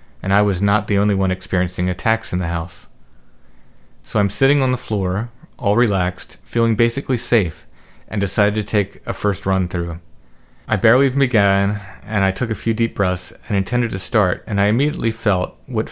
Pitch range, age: 95-110 Hz, 30-49